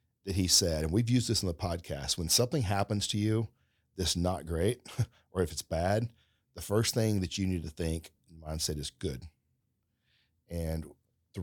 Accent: American